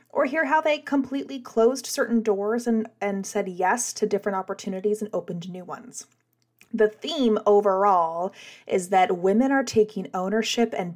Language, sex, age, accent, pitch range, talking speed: English, female, 20-39, American, 180-220 Hz, 160 wpm